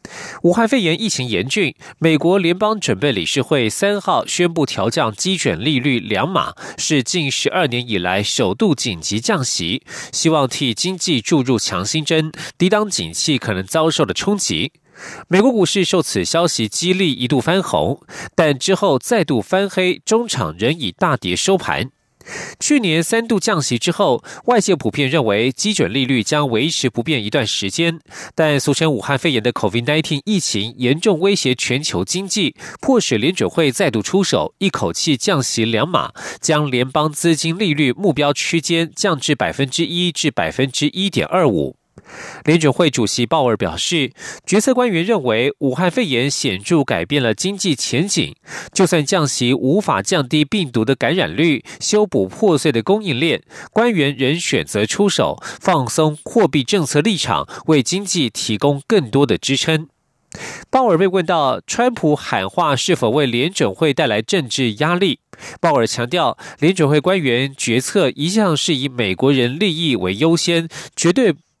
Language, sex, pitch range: German, male, 130-185 Hz